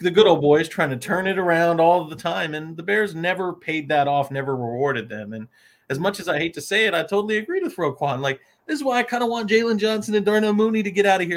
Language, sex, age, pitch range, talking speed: English, male, 30-49, 130-195 Hz, 285 wpm